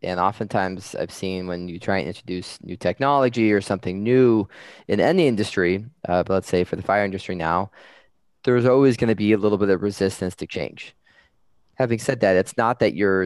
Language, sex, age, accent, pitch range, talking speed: English, male, 20-39, American, 90-110 Hz, 205 wpm